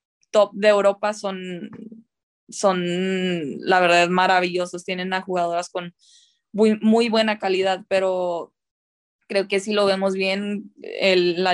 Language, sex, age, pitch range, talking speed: English, female, 20-39, 185-205 Hz, 125 wpm